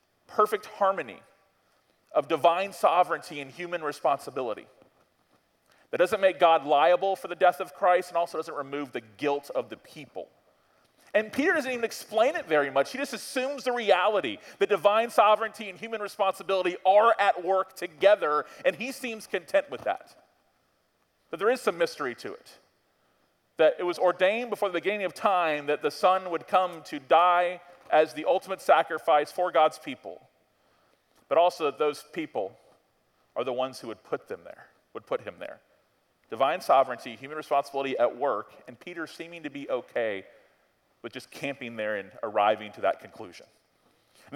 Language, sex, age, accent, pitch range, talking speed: English, male, 40-59, American, 165-235 Hz, 170 wpm